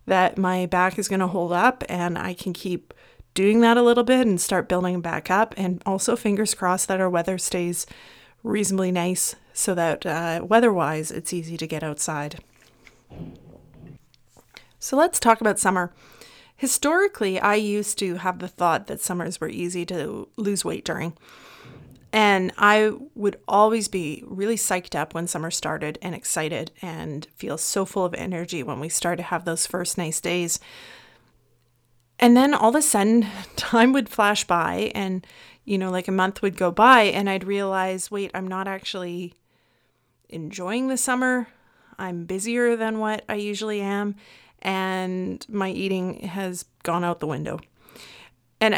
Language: English